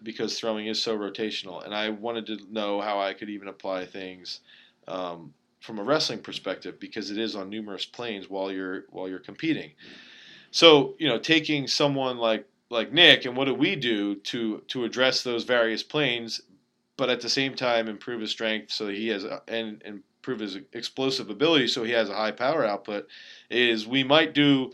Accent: American